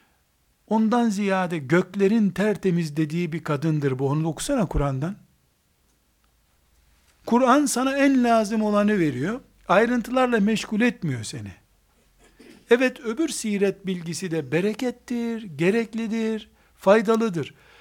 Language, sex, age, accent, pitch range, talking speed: Turkish, male, 60-79, native, 140-225 Hz, 100 wpm